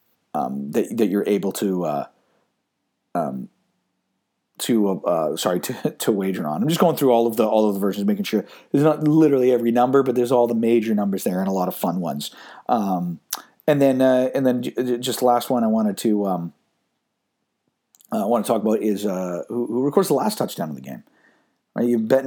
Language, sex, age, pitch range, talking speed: English, male, 40-59, 110-145 Hz, 210 wpm